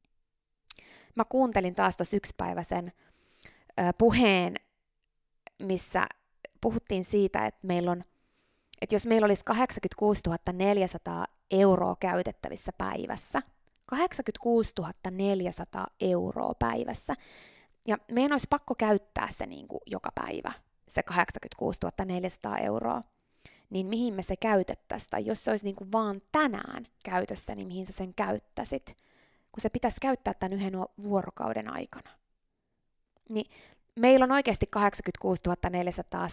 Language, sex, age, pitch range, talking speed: Finnish, female, 20-39, 185-245 Hz, 115 wpm